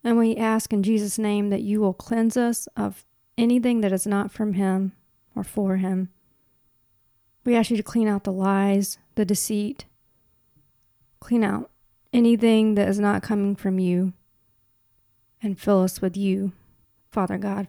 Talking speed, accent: 160 wpm, American